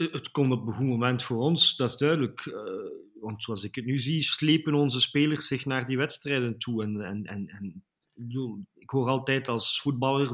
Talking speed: 195 wpm